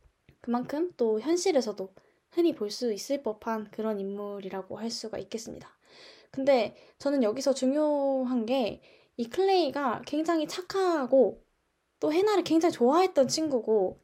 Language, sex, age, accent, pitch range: Korean, female, 10-29, native, 205-275 Hz